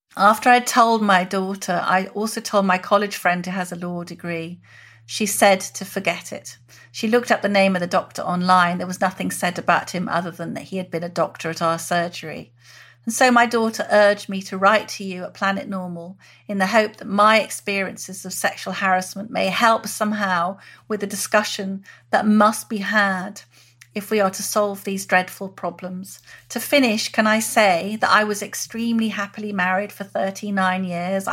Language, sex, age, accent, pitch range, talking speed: English, female, 40-59, British, 180-210 Hz, 195 wpm